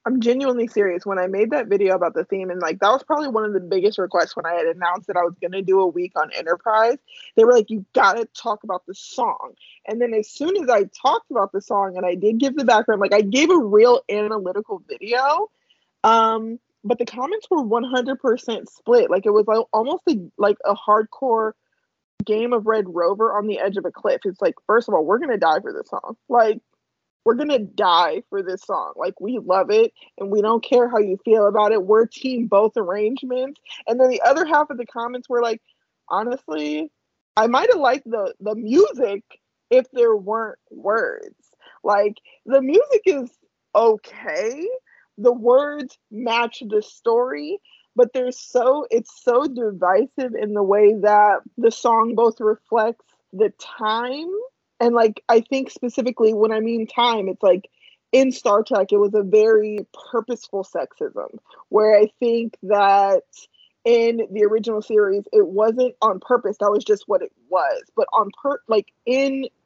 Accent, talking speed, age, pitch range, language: American, 190 wpm, 20-39, 210-275 Hz, English